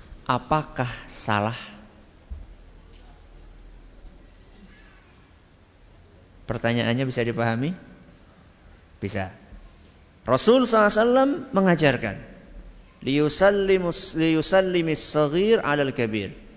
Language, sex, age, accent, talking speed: Indonesian, male, 50-69, native, 35 wpm